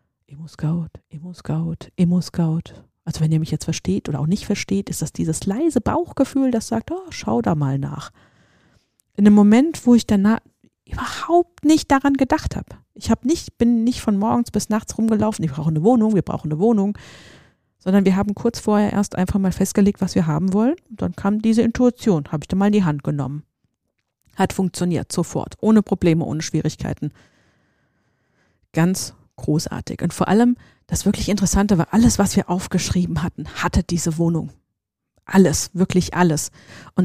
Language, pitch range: German, 160-210 Hz